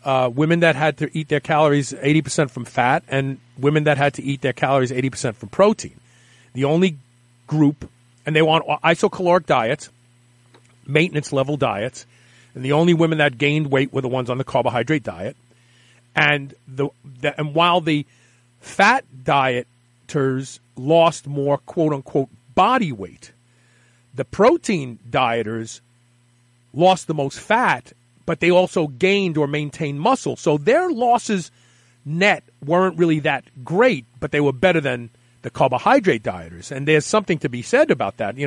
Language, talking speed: English, 155 wpm